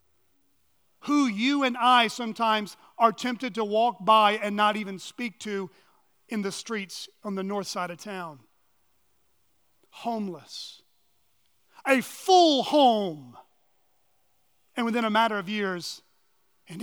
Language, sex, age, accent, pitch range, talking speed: English, male, 40-59, American, 185-240 Hz, 125 wpm